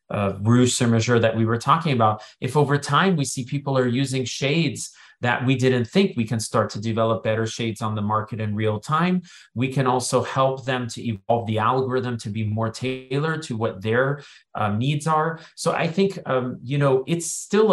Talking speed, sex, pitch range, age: 210 wpm, male, 110-135 Hz, 30-49